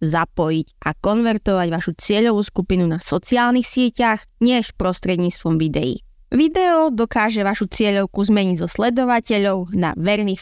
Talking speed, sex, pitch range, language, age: 125 wpm, female, 180-230 Hz, Slovak, 20-39